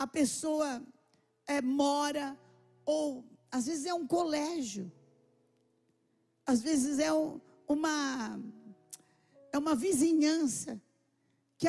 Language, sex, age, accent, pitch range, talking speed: Portuguese, female, 50-69, Brazilian, 255-315 Hz, 80 wpm